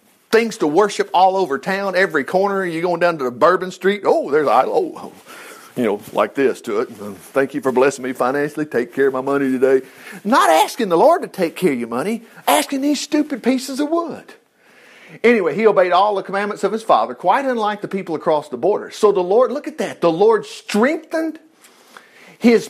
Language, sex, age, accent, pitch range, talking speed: English, male, 50-69, American, 190-310 Hz, 205 wpm